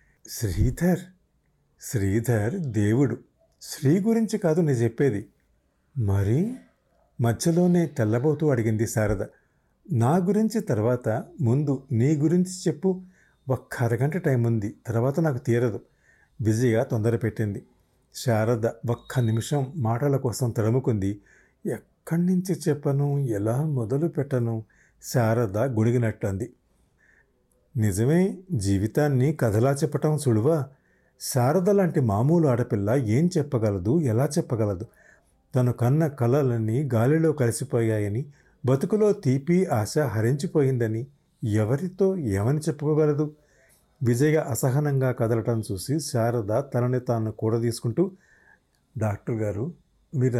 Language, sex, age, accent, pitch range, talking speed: Telugu, male, 50-69, native, 115-150 Hz, 95 wpm